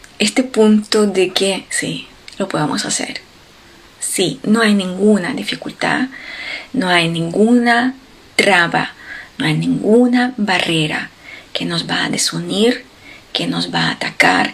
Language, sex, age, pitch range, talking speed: Spanish, female, 30-49, 185-235 Hz, 130 wpm